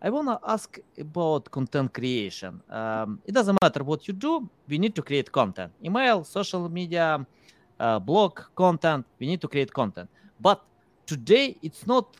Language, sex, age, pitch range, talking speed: English, male, 30-49, 115-155 Hz, 165 wpm